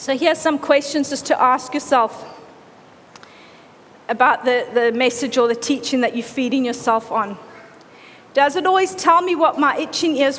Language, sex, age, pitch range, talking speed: English, female, 40-59, 265-345 Hz, 170 wpm